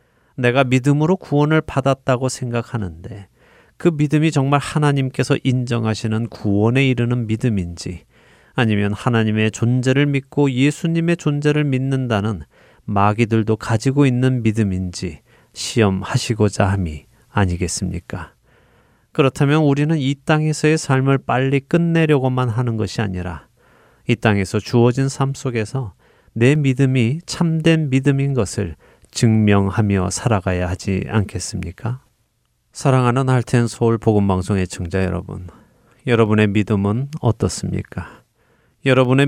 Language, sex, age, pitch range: Korean, male, 30-49, 100-135 Hz